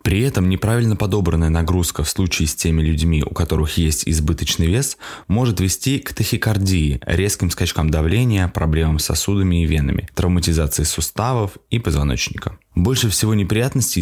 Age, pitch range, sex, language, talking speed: 20-39, 80-100 Hz, male, Russian, 145 wpm